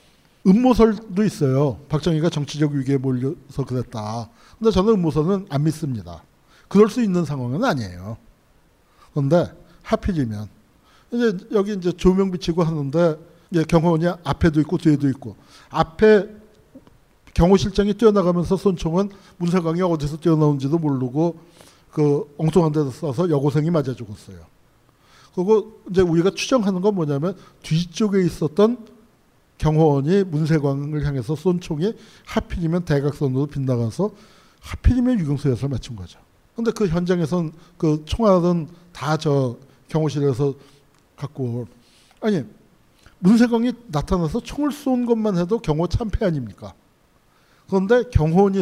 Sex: male